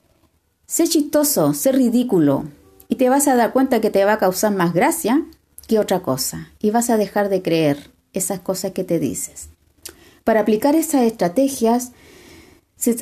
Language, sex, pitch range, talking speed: Spanish, female, 195-280 Hz, 165 wpm